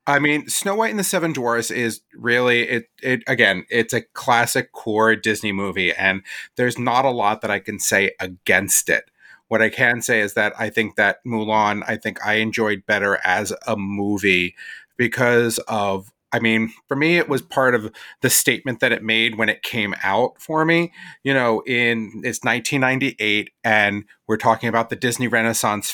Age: 30-49